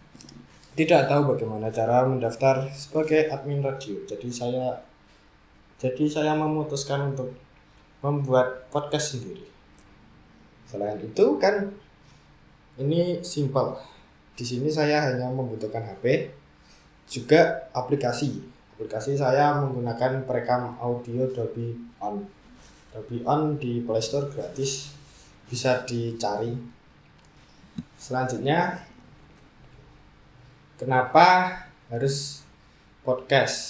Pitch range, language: 110-140 Hz, Indonesian